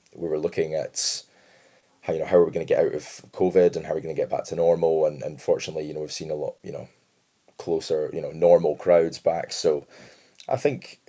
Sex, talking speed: male, 250 wpm